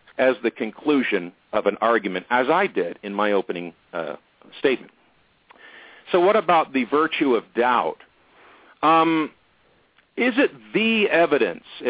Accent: American